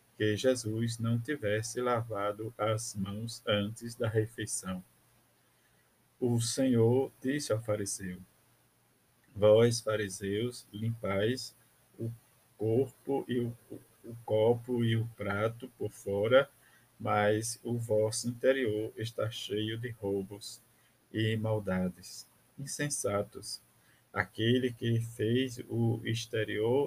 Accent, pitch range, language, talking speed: Brazilian, 105-120 Hz, Portuguese, 105 wpm